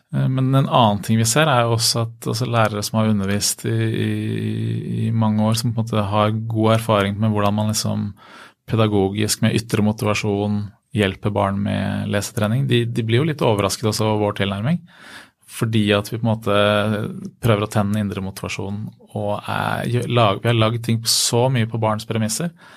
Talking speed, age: 185 wpm, 30-49